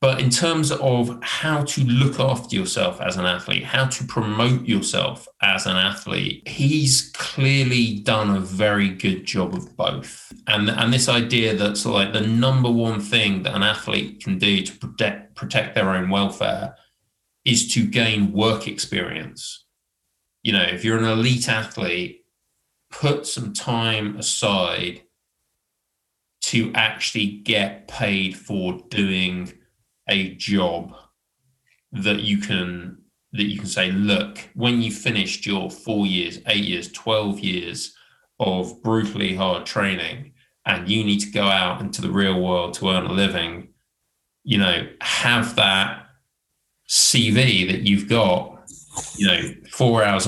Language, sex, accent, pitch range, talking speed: English, male, British, 100-120 Hz, 145 wpm